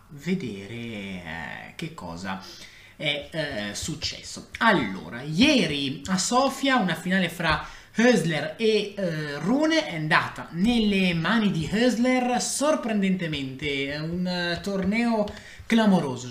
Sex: male